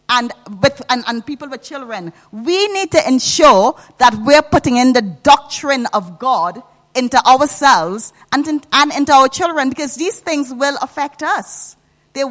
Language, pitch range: English, 200-275 Hz